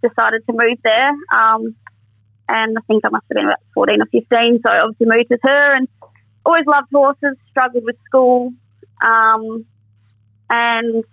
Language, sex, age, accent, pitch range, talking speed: English, female, 20-39, Australian, 205-245 Hz, 165 wpm